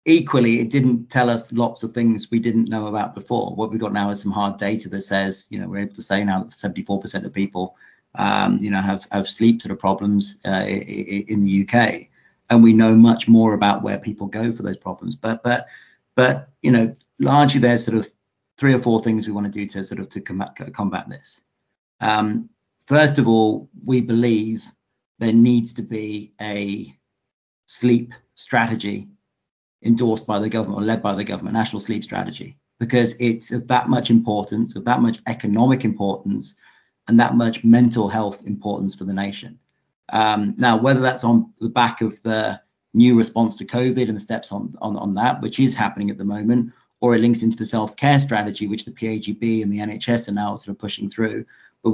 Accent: British